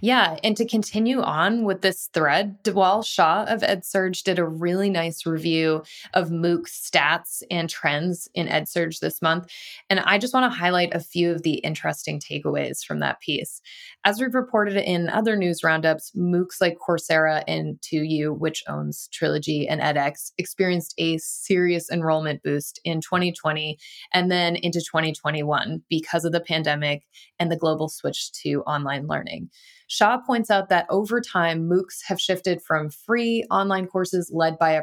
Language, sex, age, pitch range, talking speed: English, female, 20-39, 155-195 Hz, 165 wpm